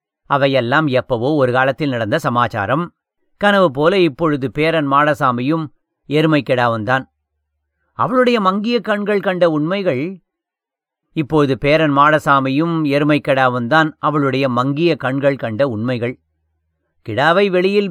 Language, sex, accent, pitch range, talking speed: English, male, Indian, 130-185 Hz, 100 wpm